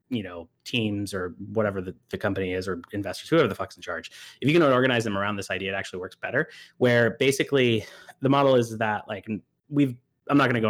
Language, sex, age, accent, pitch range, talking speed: English, male, 30-49, American, 105-130 Hz, 230 wpm